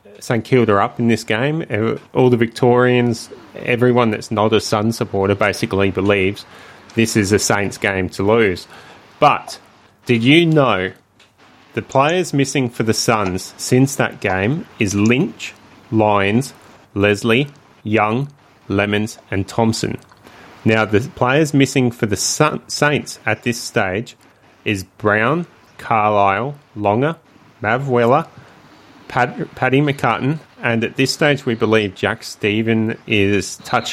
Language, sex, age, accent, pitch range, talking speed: English, male, 30-49, Australian, 105-130 Hz, 125 wpm